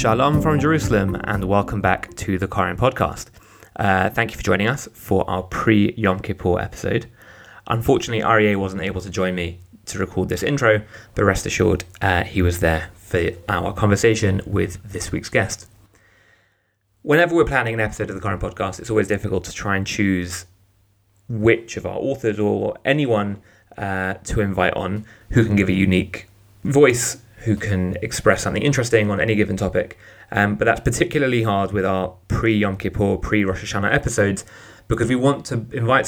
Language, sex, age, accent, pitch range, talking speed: English, male, 20-39, British, 95-115 Hz, 175 wpm